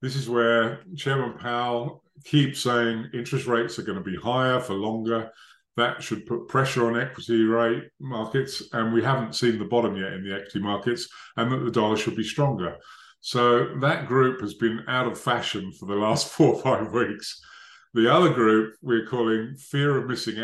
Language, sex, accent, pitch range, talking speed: English, male, British, 115-145 Hz, 190 wpm